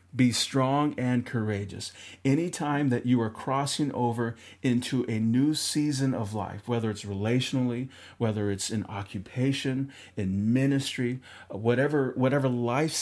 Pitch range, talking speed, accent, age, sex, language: 105-135 Hz, 130 wpm, American, 40-59, male, English